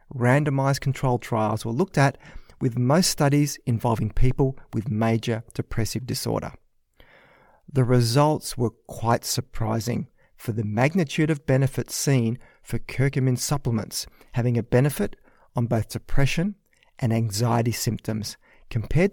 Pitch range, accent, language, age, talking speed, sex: 115-140 Hz, Australian, English, 40-59, 120 wpm, male